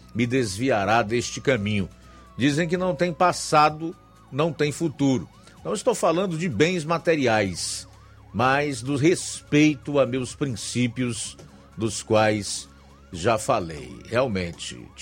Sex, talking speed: male, 115 wpm